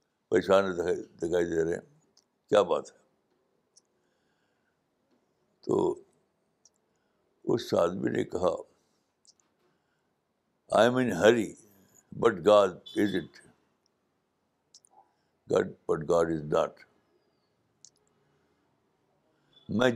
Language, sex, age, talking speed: Urdu, male, 60-79, 75 wpm